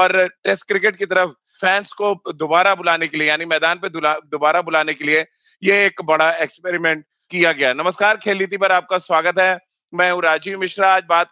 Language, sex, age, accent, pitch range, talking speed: Hindi, male, 30-49, native, 165-185 Hz, 160 wpm